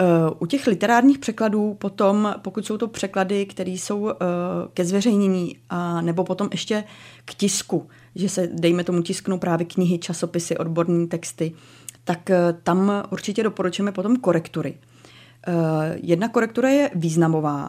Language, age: Czech, 30-49